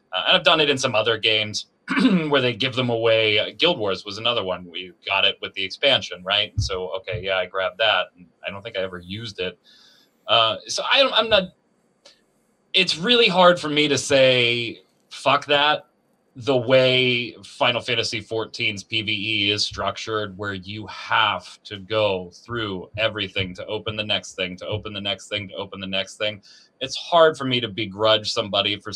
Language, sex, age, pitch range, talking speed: English, male, 30-49, 100-125 Hz, 190 wpm